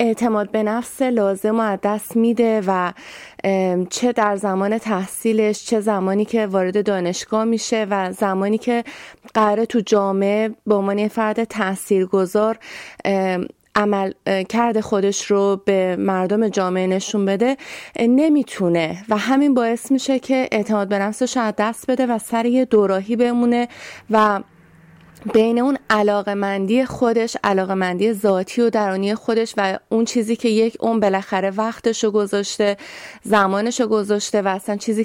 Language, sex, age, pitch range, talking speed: Persian, female, 30-49, 195-235 Hz, 130 wpm